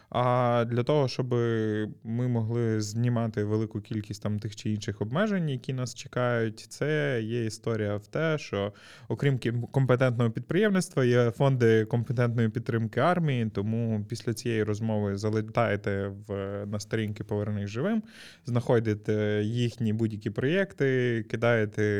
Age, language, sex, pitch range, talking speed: 20-39, Ukrainian, male, 110-135 Hz, 125 wpm